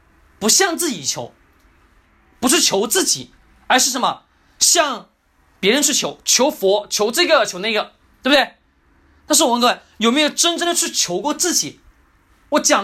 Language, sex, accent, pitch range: Chinese, male, native, 200-295 Hz